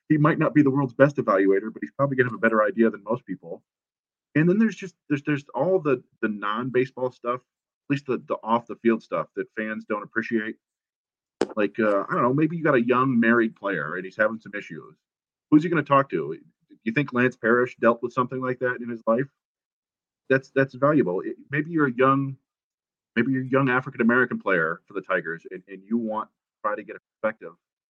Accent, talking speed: American, 220 wpm